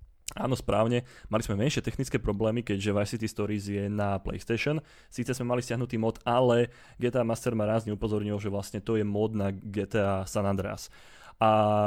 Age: 20-39